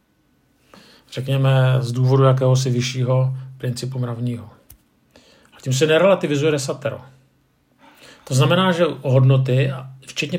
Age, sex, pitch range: 50-69, male, 125-140 Hz